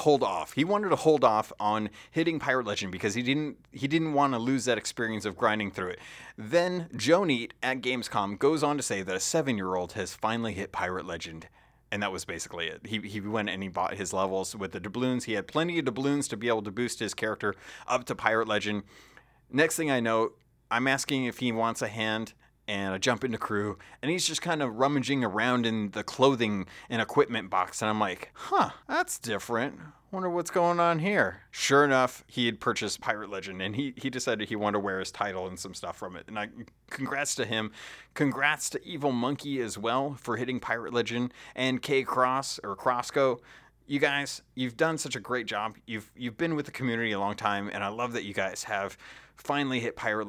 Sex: male